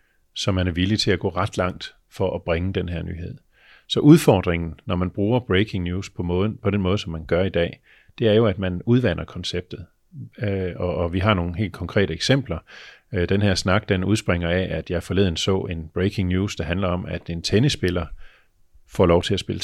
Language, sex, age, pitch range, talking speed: Danish, male, 40-59, 90-115 Hz, 225 wpm